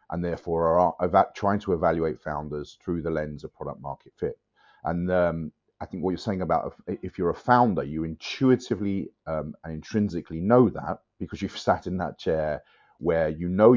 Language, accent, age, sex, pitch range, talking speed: English, British, 30-49, male, 80-100 Hz, 190 wpm